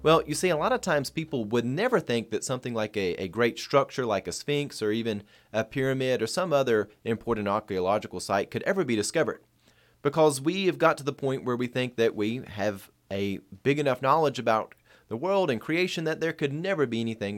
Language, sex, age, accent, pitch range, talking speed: English, male, 30-49, American, 105-145 Hz, 220 wpm